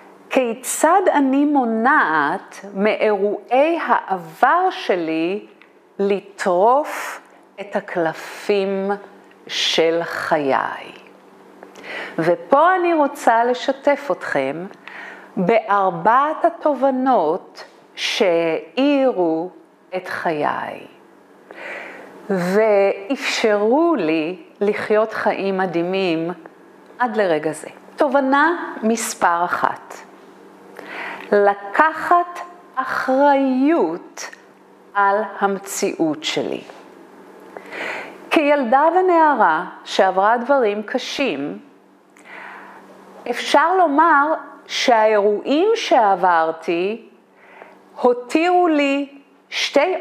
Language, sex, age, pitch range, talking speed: Hebrew, female, 50-69, 200-295 Hz, 60 wpm